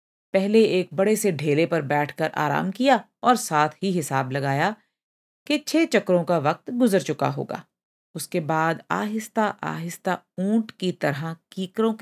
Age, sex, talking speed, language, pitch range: 50-69, female, 150 wpm, Punjabi, 155-215 Hz